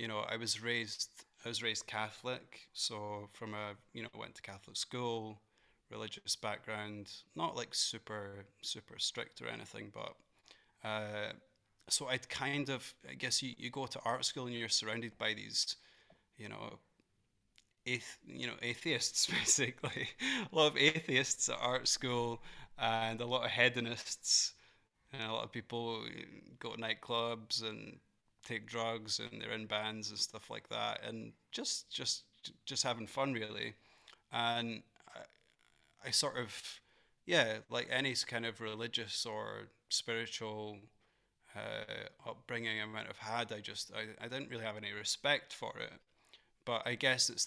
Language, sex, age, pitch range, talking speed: English, male, 20-39, 110-120 Hz, 160 wpm